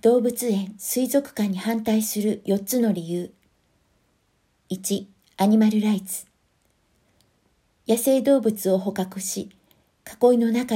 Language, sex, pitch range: Japanese, female, 190-230 Hz